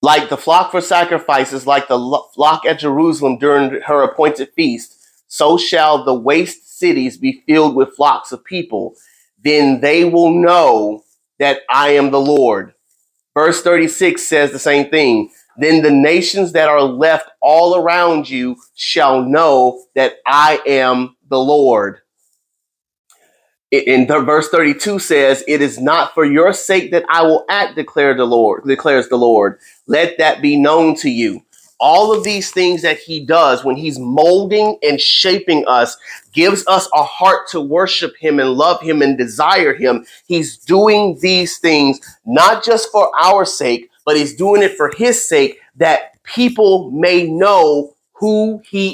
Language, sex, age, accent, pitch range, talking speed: English, male, 30-49, American, 140-185 Hz, 155 wpm